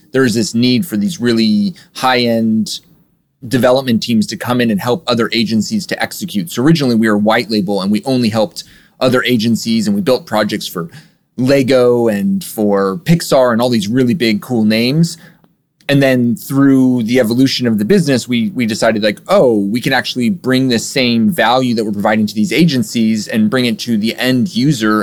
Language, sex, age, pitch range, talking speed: English, male, 30-49, 110-145 Hz, 190 wpm